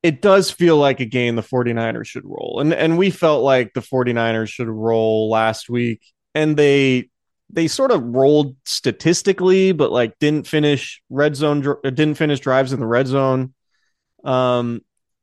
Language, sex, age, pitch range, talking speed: English, male, 20-39, 120-145 Hz, 165 wpm